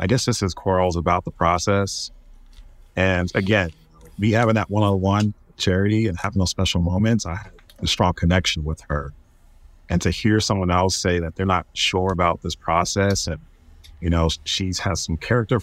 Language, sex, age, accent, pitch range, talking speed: English, male, 30-49, American, 85-100 Hz, 180 wpm